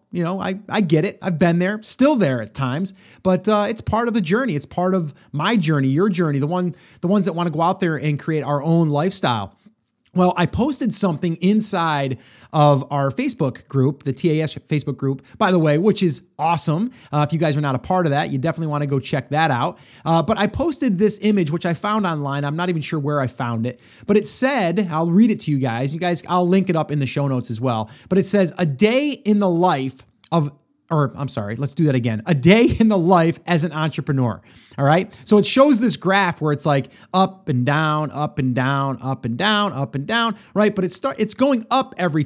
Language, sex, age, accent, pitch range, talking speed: English, male, 30-49, American, 145-205 Hz, 245 wpm